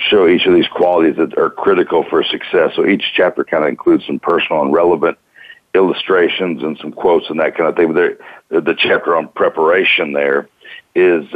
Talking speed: 200 wpm